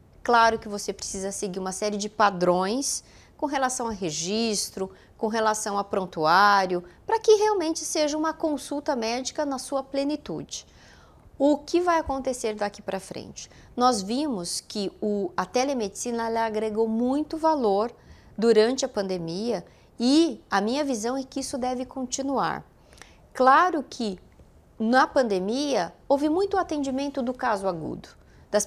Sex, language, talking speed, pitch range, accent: female, Portuguese, 135 wpm, 210-280 Hz, Brazilian